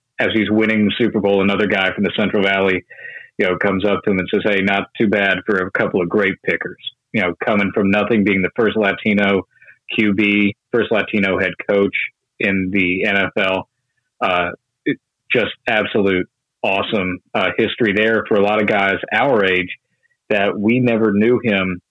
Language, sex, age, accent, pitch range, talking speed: English, male, 30-49, American, 95-110 Hz, 180 wpm